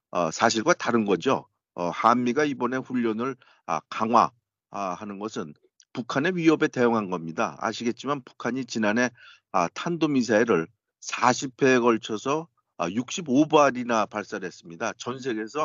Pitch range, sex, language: 110-150 Hz, male, Korean